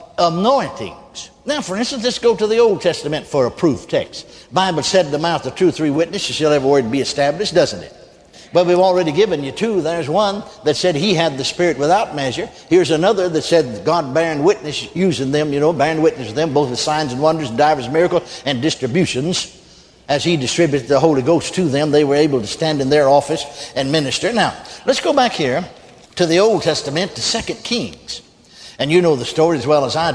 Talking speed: 225 wpm